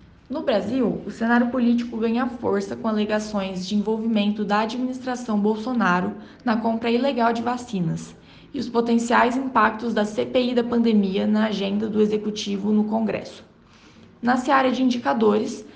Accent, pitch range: Brazilian, 215-255 Hz